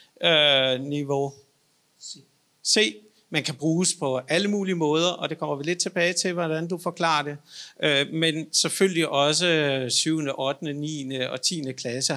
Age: 50-69